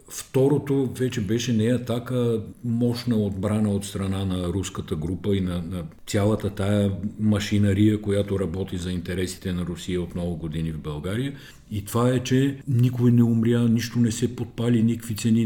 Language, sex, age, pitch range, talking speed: Bulgarian, male, 50-69, 90-120 Hz, 165 wpm